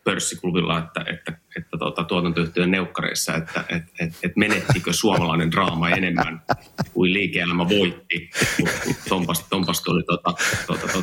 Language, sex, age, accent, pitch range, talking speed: Finnish, male, 30-49, native, 85-100 Hz, 125 wpm